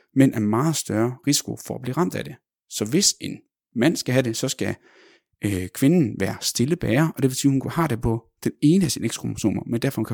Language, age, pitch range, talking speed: Danish, 30-49, 105-135 Hz, 245 wpm